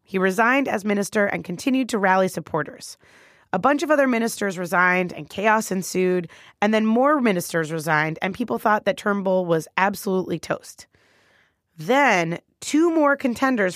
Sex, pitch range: female, 175-255 Hz